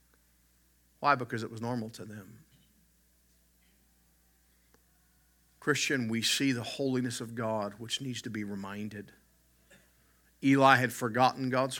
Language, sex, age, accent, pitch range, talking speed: English, male, 50-69, American, 100-130 Hz, 115 wpm